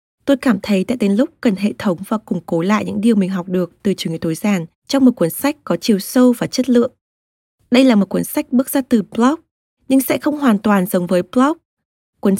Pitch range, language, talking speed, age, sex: 195-260 Hz, Vietnamese, 245 wpm, 20-39, female